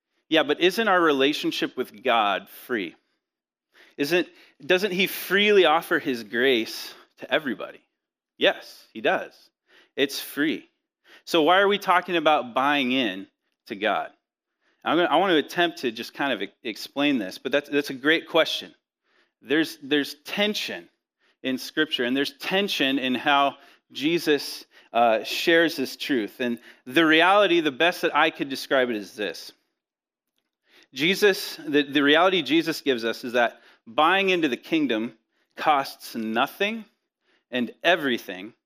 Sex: male